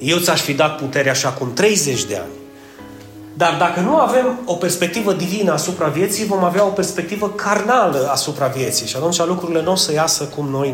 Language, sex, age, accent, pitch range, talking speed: Romanian, male, 30-49, native, 145-190 Hz, 195 wpm